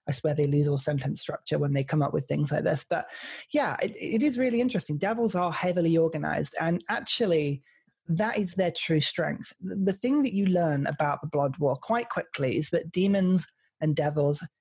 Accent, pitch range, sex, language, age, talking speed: British, 150-185 Hz, male, English, 30-49, 200 wpm